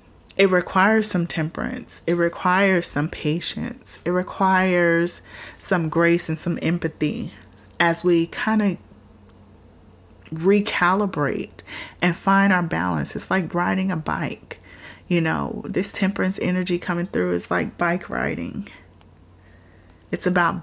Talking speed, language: 120 wpm, English